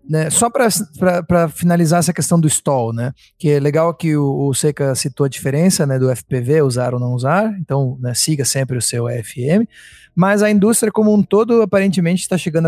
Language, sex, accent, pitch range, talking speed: Portuguese, male, Brazilian, 130-165 Hz, 200 wpm